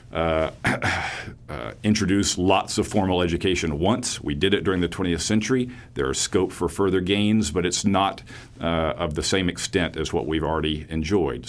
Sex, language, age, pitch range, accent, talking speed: male, English, 50-69, 80-100 Hz, American, 180 wpm